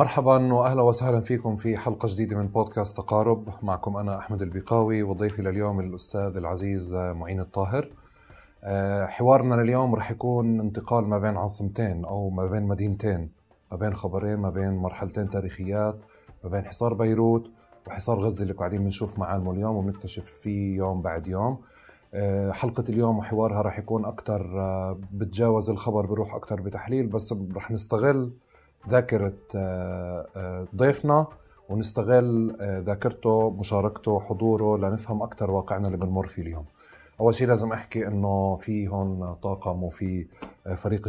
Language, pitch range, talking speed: Arabic, 95-110 Hz, 135 wpm